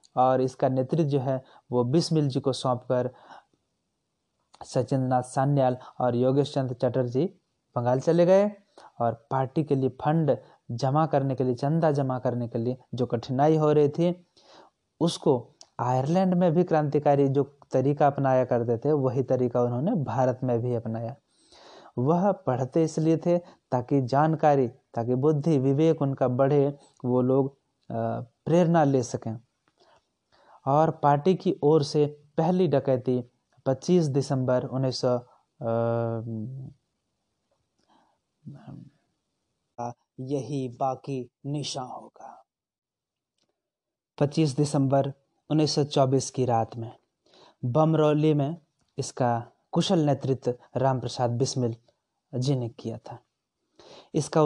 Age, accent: 30-49, native